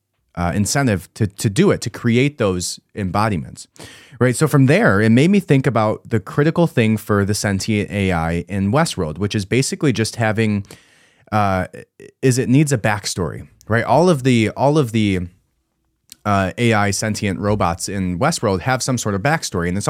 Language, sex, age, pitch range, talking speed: English, male, 30-49, 95-130 Hz, 180 wpm